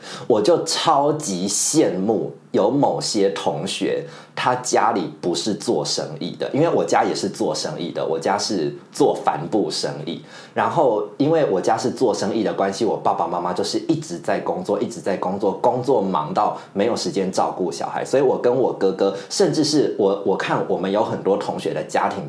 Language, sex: Chinese, male